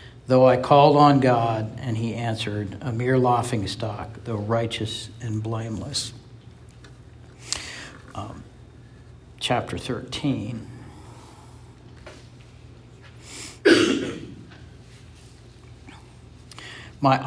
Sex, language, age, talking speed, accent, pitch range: male, English, 60-79, 65 wpm, American, 115-140 Hz